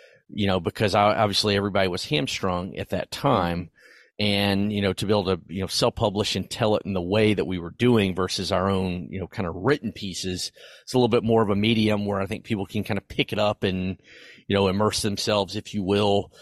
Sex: male